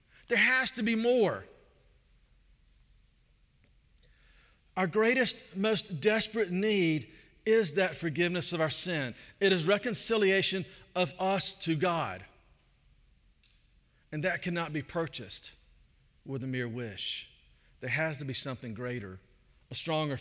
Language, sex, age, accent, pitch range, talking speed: English, male, 40-59, American, 130-185 Hz, 120 wpm